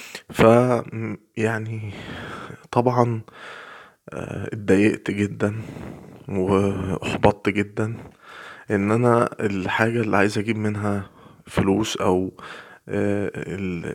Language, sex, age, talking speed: Arabic, male, 20-39, 75 wpm